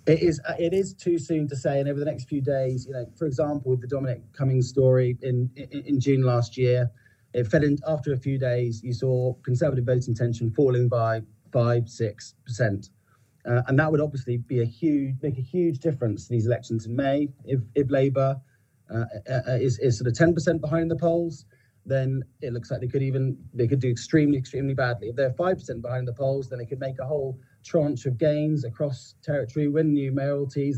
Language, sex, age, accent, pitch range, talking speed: English, male, 30-49, British, 120-140 Hz, 215 wpm